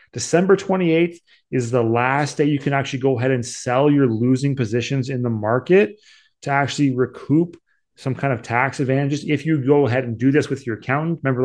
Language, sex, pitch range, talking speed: English, male, 120-140 Hz, 200 wpm